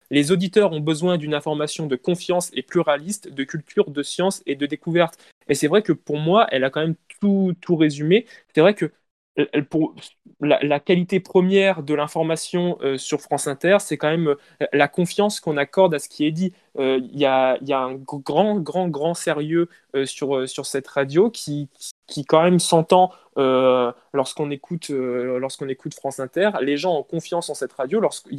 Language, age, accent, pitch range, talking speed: French, 20-39, French, 140-175 Hz, 200 wpm